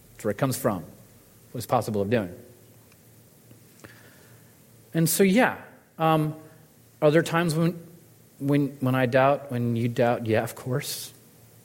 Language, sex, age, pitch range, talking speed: English, male, 30-49, 110-130 Hz, 135 wpm